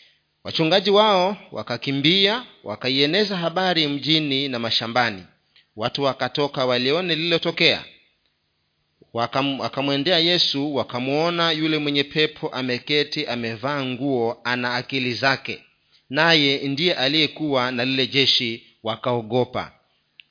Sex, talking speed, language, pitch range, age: male, 90 wpm, Swahili, 120-160 Hz, 40-59